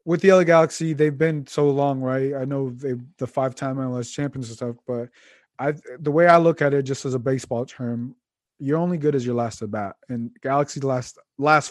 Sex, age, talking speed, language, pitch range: male, 20-39, 210 wpm, English, 120-145 Hz